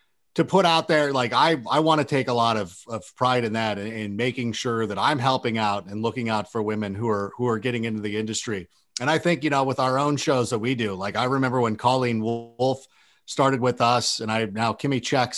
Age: 40-59